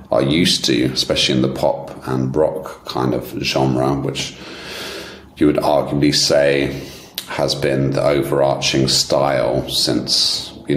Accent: British